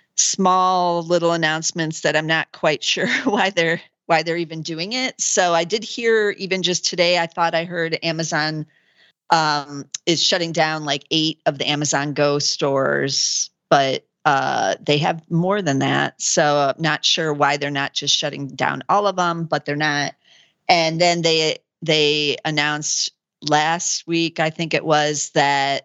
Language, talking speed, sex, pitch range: English, 170 wpm, female, 145-170 Hz